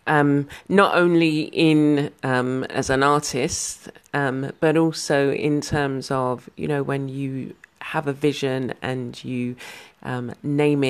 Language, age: English, 40-59